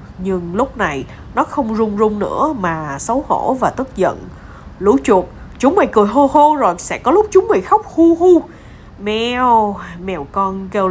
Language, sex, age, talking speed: Vietnamese, female, 20-39, 185 wpm